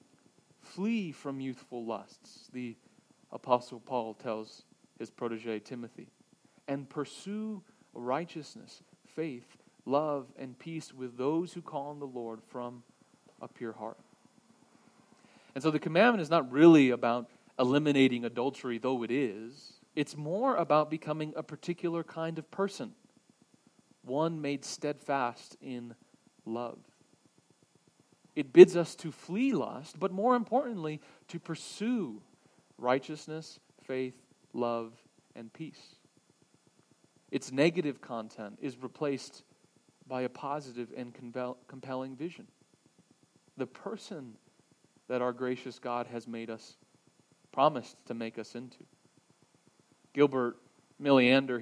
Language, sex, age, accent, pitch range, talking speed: English, male, 30-49, American, 125-165 Hz, 115 wpm